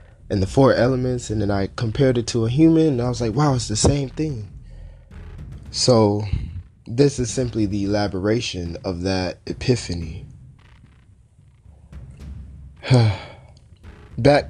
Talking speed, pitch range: 130 wpm, 90-120 Hz